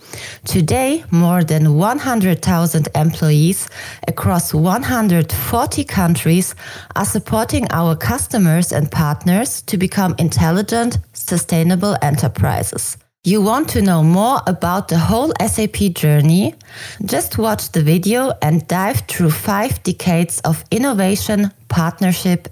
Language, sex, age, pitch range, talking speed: English, female, 20-39, 150-205 Hz, 110 wpm